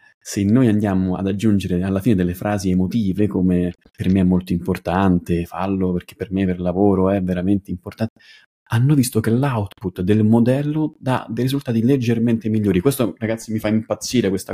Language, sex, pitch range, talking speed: Italian, male, 95-125 Hz, 175 wpm